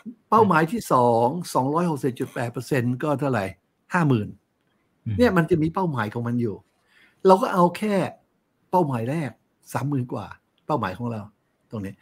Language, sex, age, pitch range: Thai, male, 60-79, 115-150 Hz